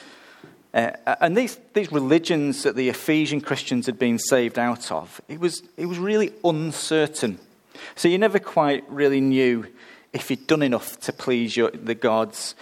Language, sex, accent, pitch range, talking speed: English, male, British, 115-145 Hz, 165 wpm